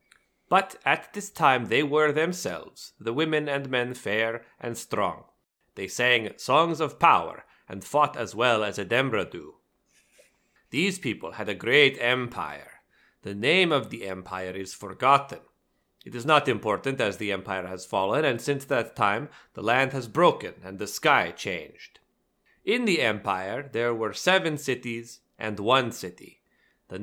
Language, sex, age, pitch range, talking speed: English, male, 30-49, 100-135 Hz, 160 wpm